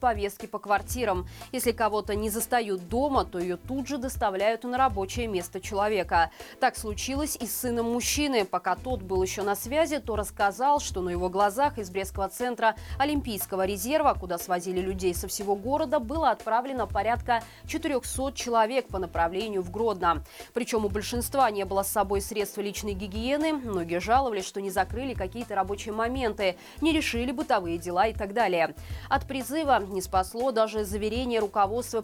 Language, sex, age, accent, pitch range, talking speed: Russian, female, 20-39, native, 195-255 Hz, 165 wpm